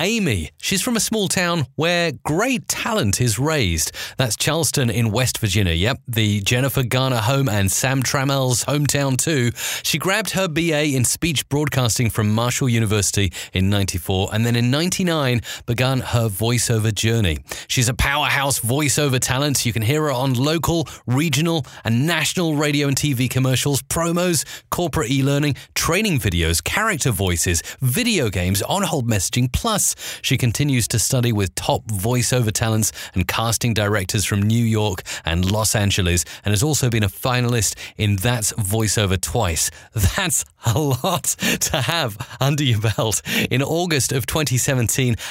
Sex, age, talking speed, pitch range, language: male, 30-49, 150 wpm, 110-145 Hz, English